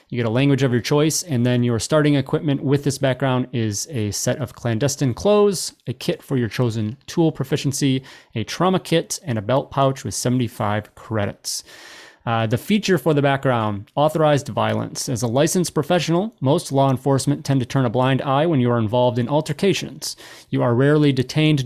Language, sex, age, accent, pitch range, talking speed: English, male, 30-49, American, 125-155 Hz, 190 wpm